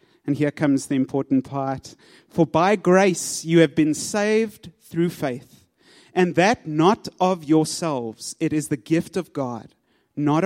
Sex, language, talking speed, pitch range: male, English, 155 wpm, 145-185 Hz